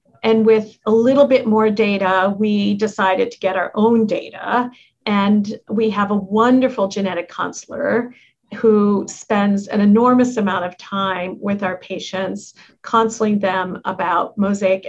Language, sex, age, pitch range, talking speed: English, female, 50-69, 195-225 Hz, 140 wpm